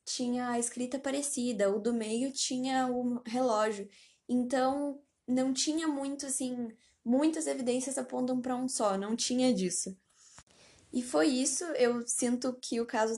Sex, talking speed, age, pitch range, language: female, 145 wpm, 10-29, 225-260 Hz, Portuguese